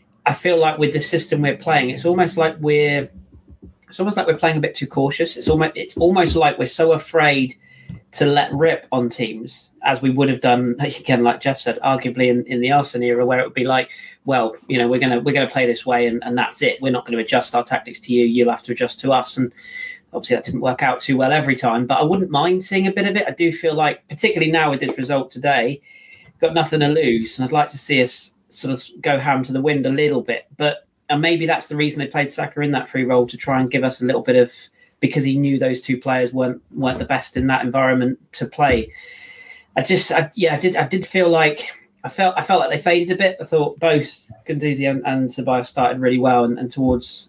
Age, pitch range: 30-49, 125-155 Hz